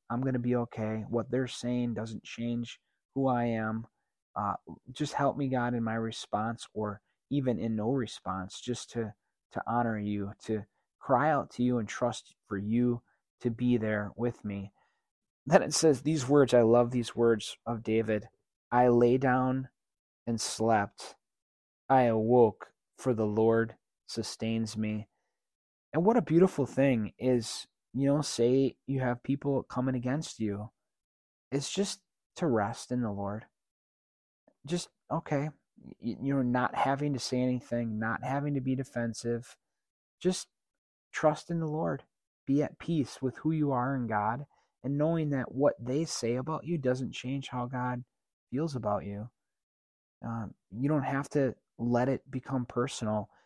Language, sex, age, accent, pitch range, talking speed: English, male, 20-39, American, 110-135 Hz, 160 wpm